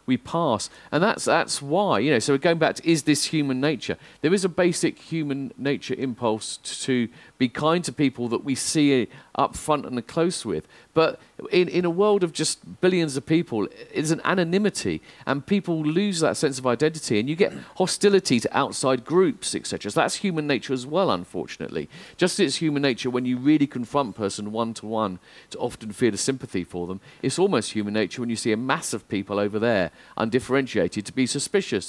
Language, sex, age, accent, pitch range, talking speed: English, male, 40-59, British, 120-165 Hz, 205 wpm